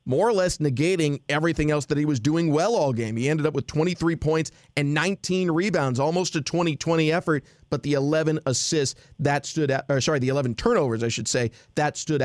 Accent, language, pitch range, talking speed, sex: American, English, 130-155 Hz, 215 wpm, male